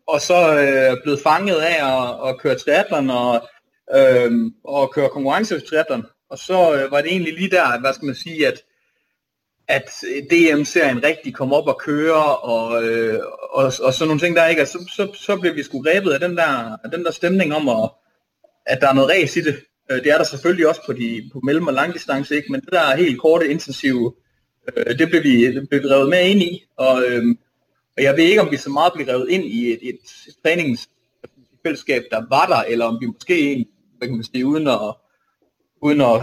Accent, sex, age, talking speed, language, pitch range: native, male, 30-49, 215 wpm, Danish, 135-175 Hz